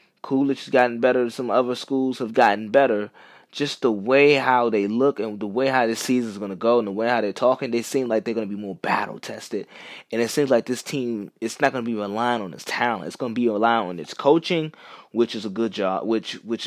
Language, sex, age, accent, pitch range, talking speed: English, male, 20-39, American, 110-140 Hz, 255 wpm